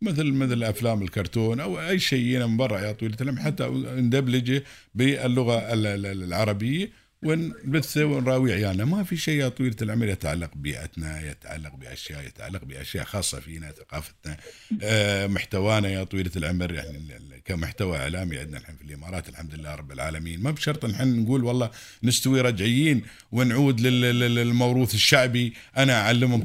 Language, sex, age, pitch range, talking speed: Arabic, male, 50-69, 100-130 Hz, 140 wpm